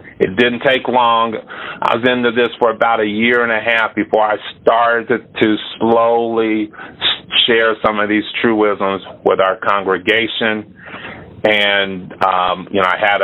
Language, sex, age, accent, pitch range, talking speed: English, male, 40-59, American, 100-115 Hz, 155 wpm